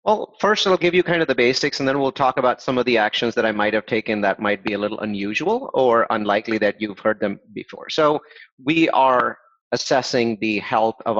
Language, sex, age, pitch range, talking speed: English, male, 30-49, 110-135 Hz, 230 wpm